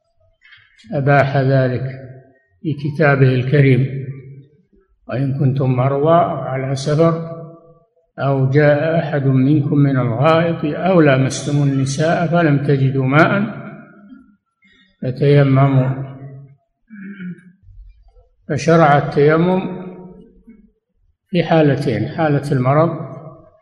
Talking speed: 75 wpm